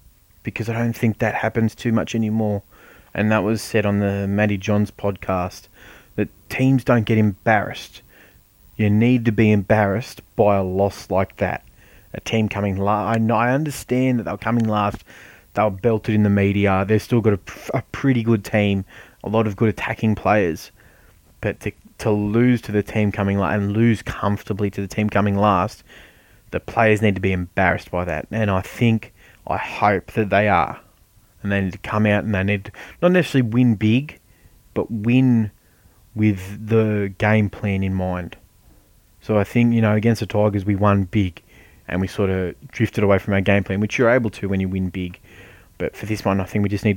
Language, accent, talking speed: English, Australian, 200 wpm